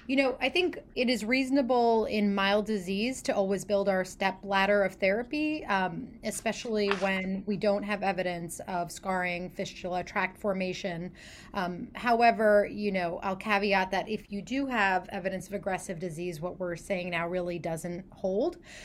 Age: 30-49